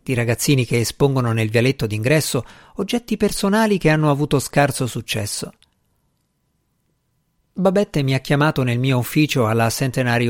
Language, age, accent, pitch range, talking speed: Italian, 50-69, native, 120-155 Hz, 135 wpm